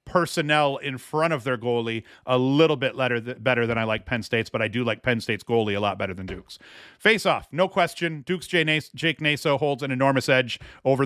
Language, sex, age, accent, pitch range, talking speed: English, male, 40-59, American, 125-150 Hz, 205 wpm